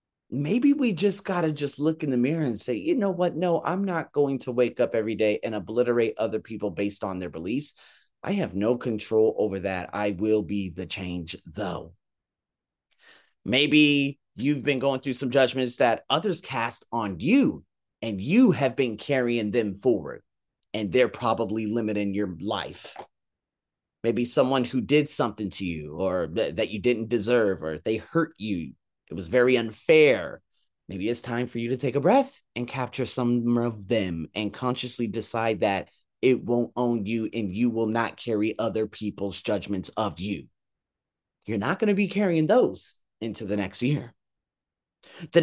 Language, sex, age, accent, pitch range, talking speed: English, male, 30-49, American, 105-150 Hz, 175 wpm